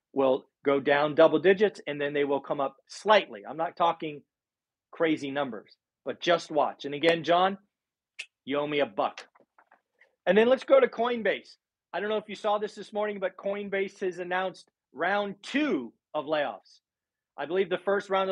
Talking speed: 185 wpm